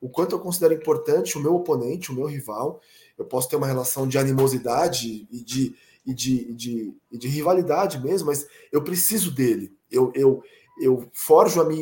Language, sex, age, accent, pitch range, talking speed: Portuguese, male, 20-39, Brazilian, 135-195 Hz, 160 wpm